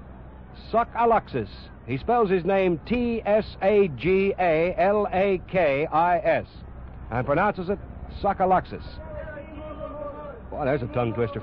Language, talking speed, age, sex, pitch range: English, 80 wpm, 60-79, male, 150-220 Hz